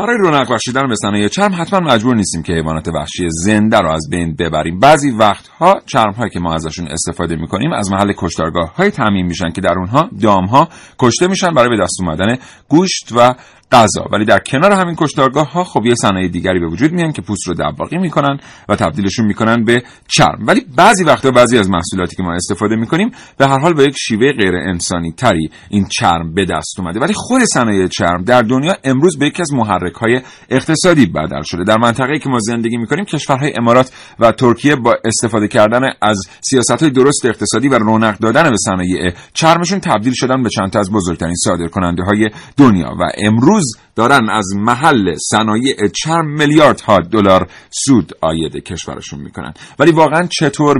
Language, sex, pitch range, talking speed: Persian, male, 90-135 Hz, 175 wpm